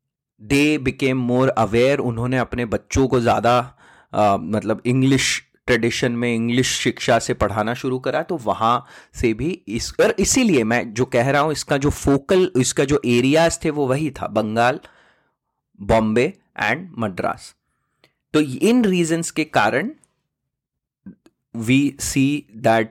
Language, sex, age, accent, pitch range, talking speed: English, male, 30-49, Indian, 115-155 Hz, 110 wpm